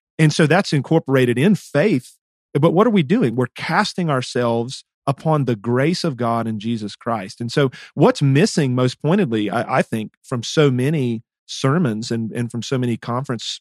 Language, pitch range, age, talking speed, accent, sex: English, 120-155 Hz, 40-59, 180 wpm, American, male